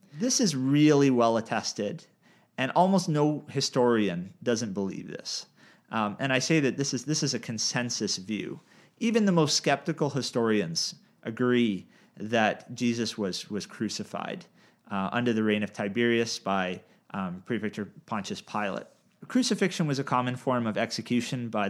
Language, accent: English, American